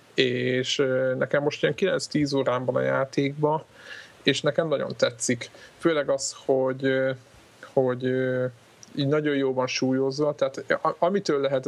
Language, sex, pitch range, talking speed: Hungarian, male, 125-140 Hz, 120 wpm